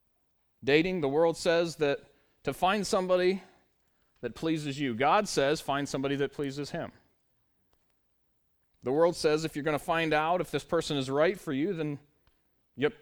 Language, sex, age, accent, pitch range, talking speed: English, male, 30-49, American, 145-195 Hz, 165 wpm